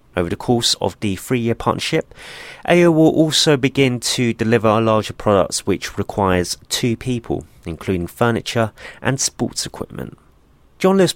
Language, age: English, 30-49